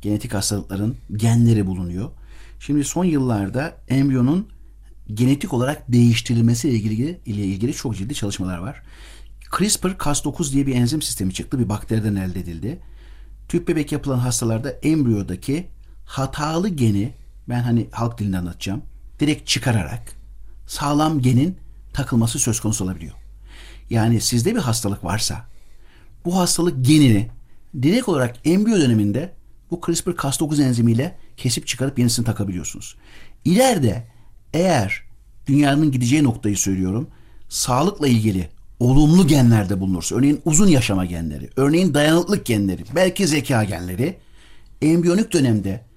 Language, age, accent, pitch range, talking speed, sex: Turkish, 60-79, native, 105-150 Hz, 120 wpm, male